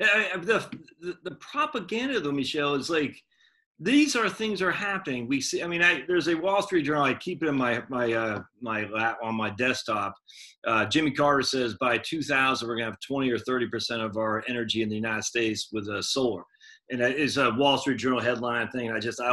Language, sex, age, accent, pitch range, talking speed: English, male, 40-59, American, 115-180 Hz, 220 wpm